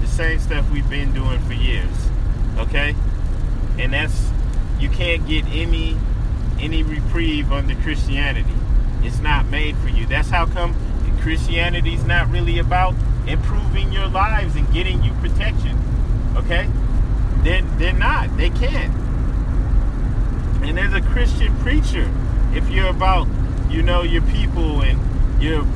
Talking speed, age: 135 wpm, 30-49